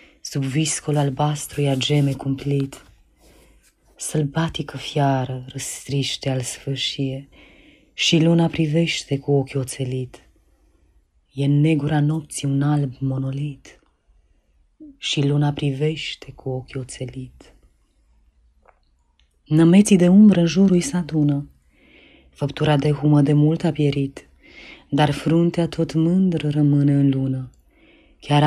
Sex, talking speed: female, 110 wpm